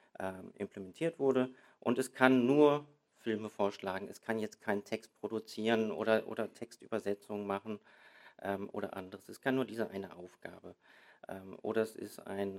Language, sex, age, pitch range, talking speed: German, male, 40-59, 100-120 Hz, 155 wpm